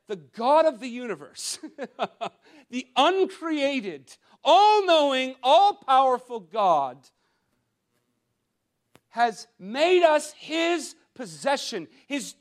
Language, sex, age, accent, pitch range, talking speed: English, male, 50-69, American, 200-310 Hz, 75 wpm